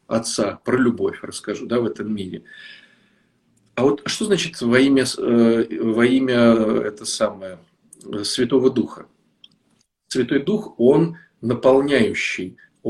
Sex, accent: male, native